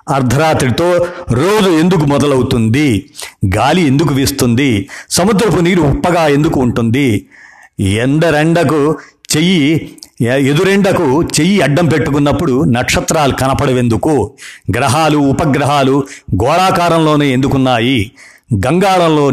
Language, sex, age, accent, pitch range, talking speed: Telugu, male, 50-69, native, 125-160 Hz, 80 wpm